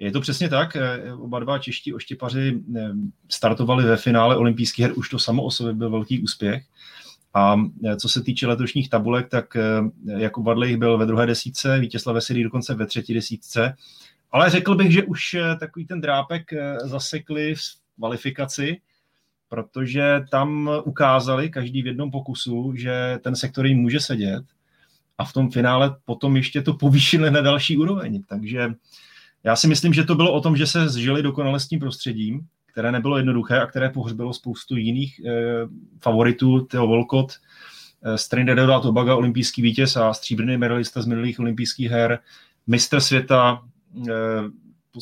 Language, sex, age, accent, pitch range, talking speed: Czech, male, 30-49, native, 115-135 Hz, 155 wpm